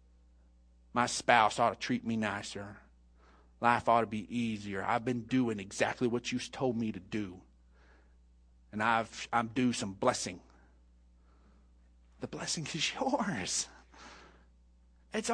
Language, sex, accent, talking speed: English, male, American, 130 wpm